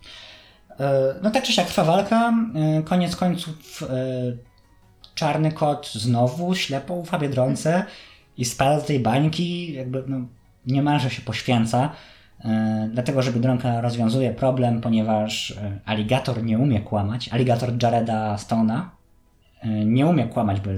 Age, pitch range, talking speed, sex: 20-39, 110-150 Hz, 135 wpm, male